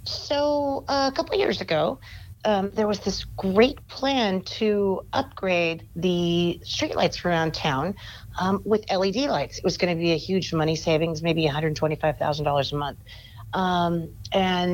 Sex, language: female, English